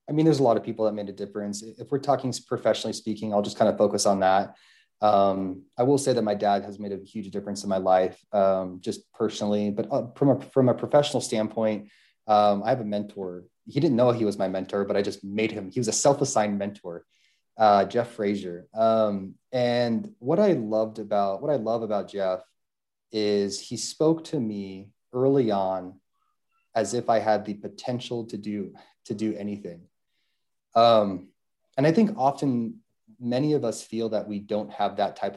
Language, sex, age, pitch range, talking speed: English, male, 30-49, 100-120 Hz, 200 wpm